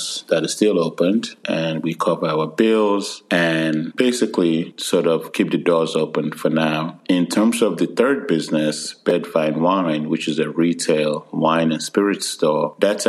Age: 30-49